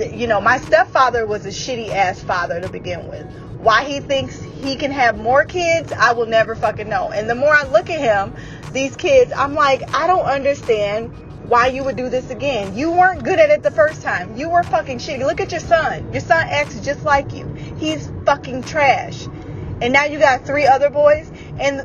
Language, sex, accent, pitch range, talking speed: English, female, American, 210-295 Hz, 215 wpm